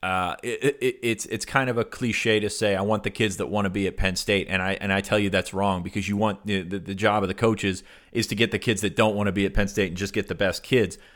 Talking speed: 325 wpm